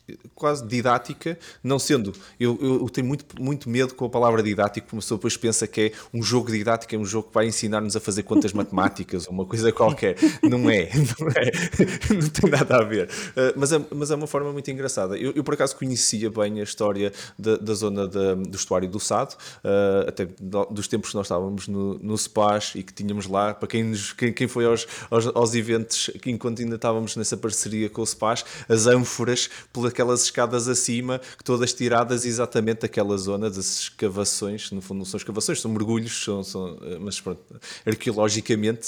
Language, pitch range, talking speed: Portuguese, 100-125 Hz, 200 wpm